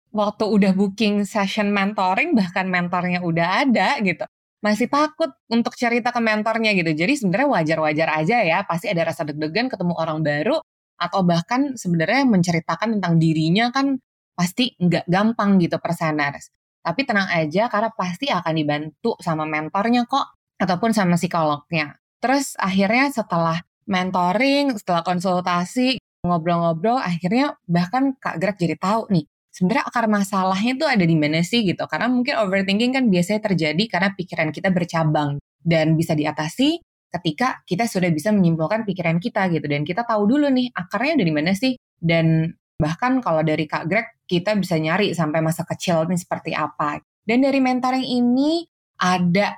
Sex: female